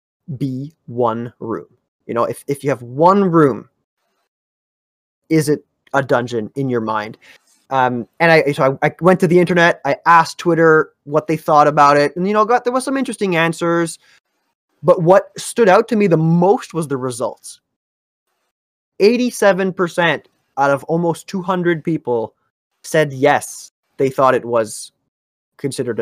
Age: 20-39